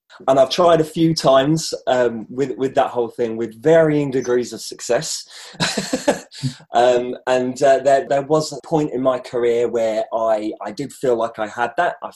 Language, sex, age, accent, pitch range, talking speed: English, male, 20-39, British, 105-130 Hz, 190 wpm